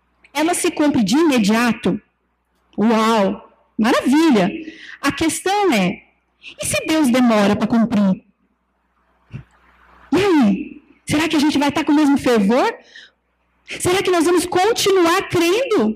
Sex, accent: female, Brazilian